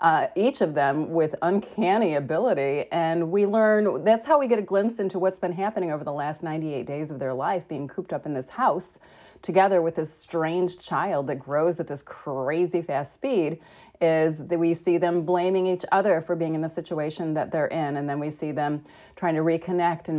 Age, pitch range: 30-49, 150-185 Hz